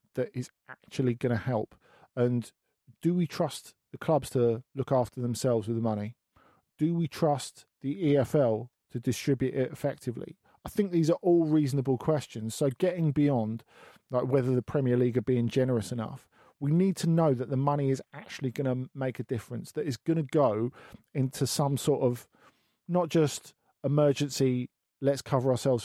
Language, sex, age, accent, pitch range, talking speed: English, male, 40-59, British, 125-150 Hz, 175 wpm